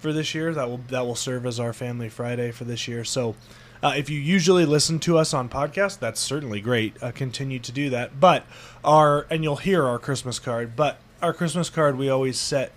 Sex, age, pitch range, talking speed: male, 20-39, 115-140 Hz, 225 wpm